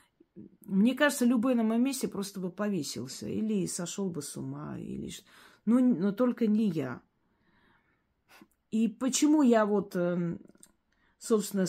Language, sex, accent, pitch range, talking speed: Russian, female, native, 180-225 Hz, 130 wpm